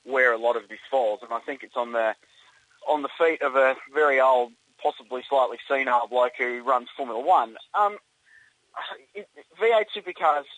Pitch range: 120-150 Hz